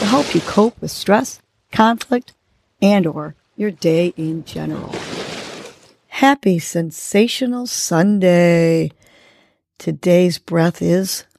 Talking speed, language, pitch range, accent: 95 wpm, English, 165-240 Hz, American